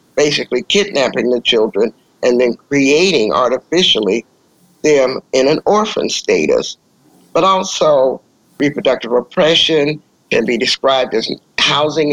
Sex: male